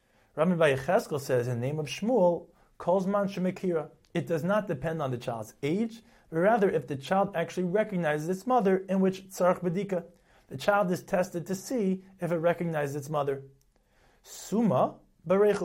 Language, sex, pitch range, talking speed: English, male, 140-190 Hz, 155 wpm